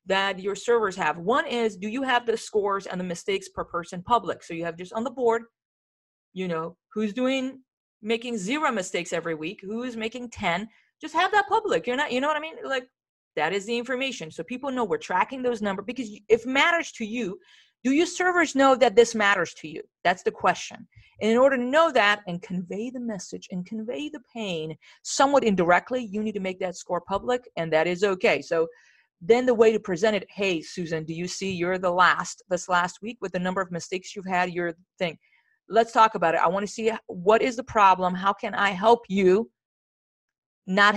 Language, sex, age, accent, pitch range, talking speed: English, female, 40-59, American, 175-235 Hz, 220 wpm